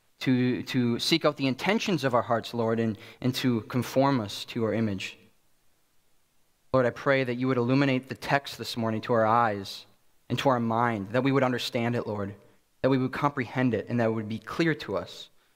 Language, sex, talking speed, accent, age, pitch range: English, male, 210 wpm, American, 20-39, 110-135 Hz